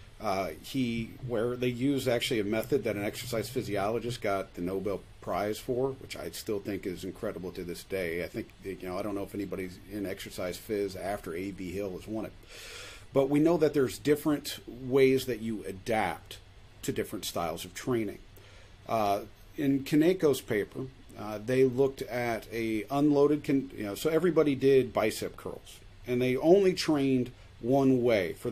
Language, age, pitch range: English, 40-59, 105-135 Hz